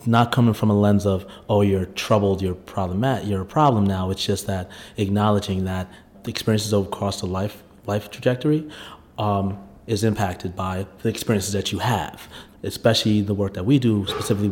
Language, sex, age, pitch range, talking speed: English, male, 30-49, 100-115 Hz, 180 wpm